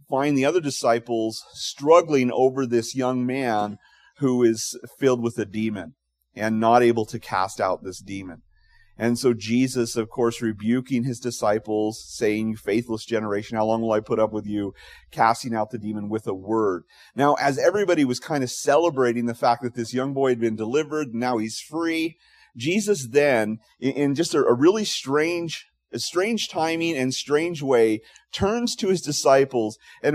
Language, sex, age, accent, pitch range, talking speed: English, male, 40-59, American, 110-145 Hz, 175 wpm